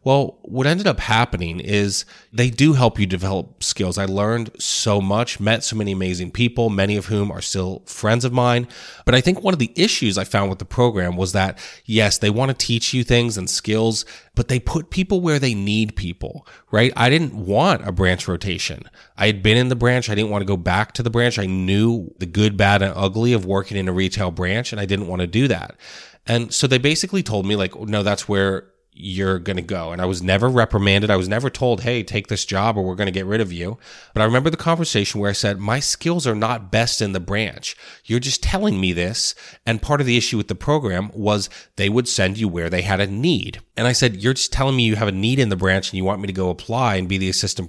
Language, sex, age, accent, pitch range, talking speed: English, male, 30-49, American, 95-120 Hz, 255 wpm